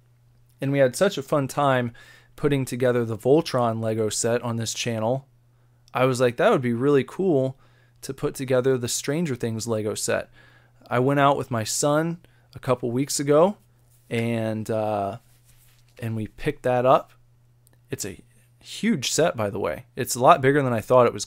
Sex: male